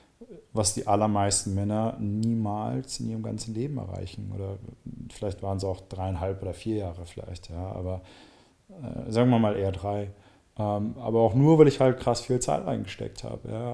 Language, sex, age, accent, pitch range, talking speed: German, male, 30-49, German, 105-120 Hz, 180 wpm